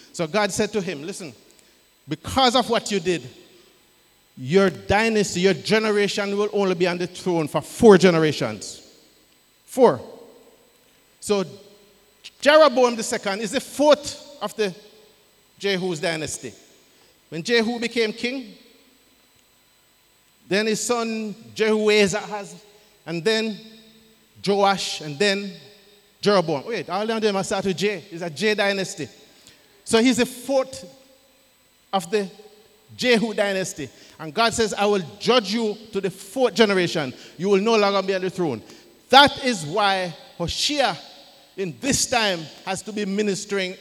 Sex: male